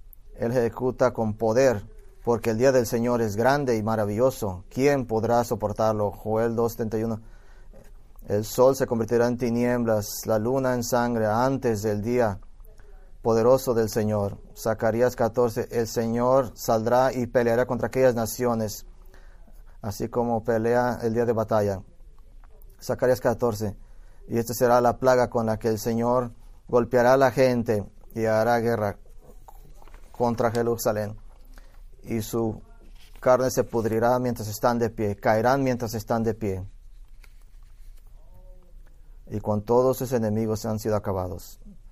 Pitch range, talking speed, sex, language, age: 105-120 Hz, 135 wpm, male, English, 30-49